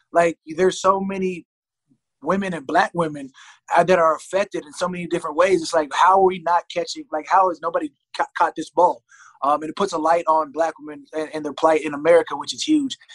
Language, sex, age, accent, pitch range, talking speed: English, male, 20-39, American, 155-180 Hz, 230 wpm